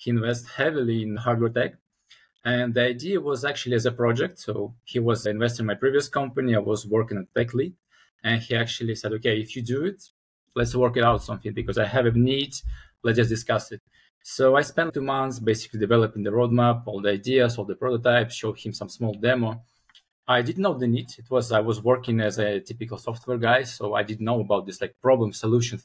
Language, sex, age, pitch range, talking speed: English, male, 20-39, 110-125 Hz, 220 wpm